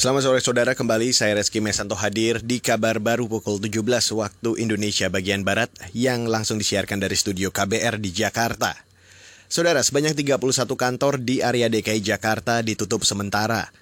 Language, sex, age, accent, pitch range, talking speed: Indonesian, male, 30-49, native, 110-130 Hz, 150 wpm